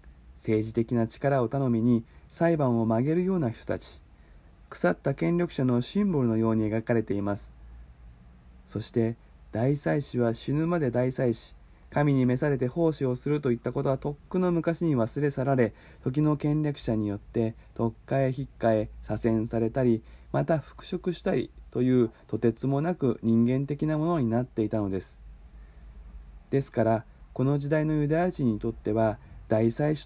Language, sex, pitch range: Japanese, male, 110-145 Hz